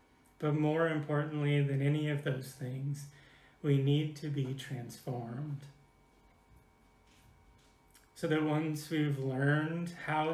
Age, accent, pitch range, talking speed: 30-49, American, 135-150 Hz, 110 wpm